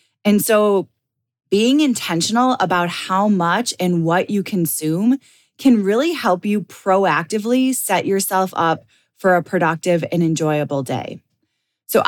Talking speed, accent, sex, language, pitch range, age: 130 wpm, American, female, English, 165-205 Hz, 20-39